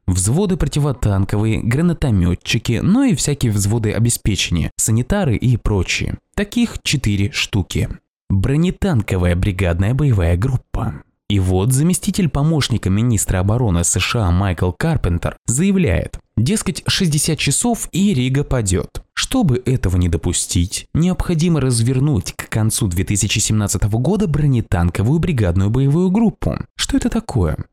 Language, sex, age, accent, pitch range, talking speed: Russian, male, 20-39, native, 95-155 Hz, 110 wpm